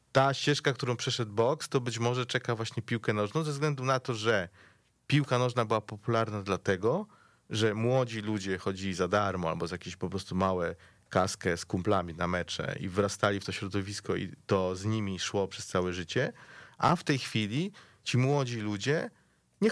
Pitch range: 95-125 Hz